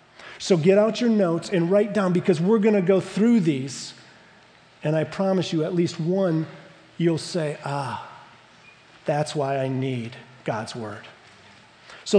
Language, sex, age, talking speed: English, male, 40-59, 160 wpm